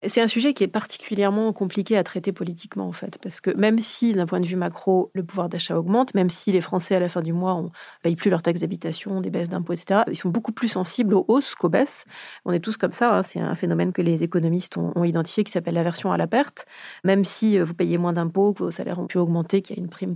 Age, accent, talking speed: 30-49, French, 270 wpm